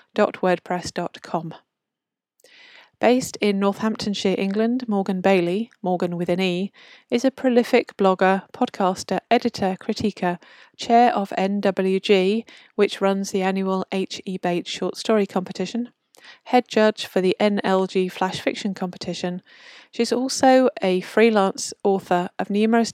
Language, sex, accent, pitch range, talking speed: English, female, British, 185-230 Hz, 120 wpm